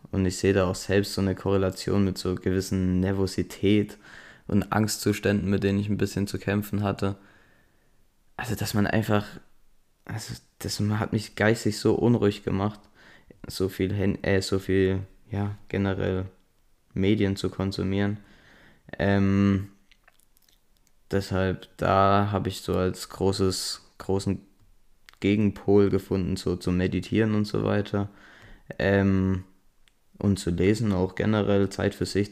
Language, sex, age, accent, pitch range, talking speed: German, male, 20-39, German, 95-105 Hz, 135 wpm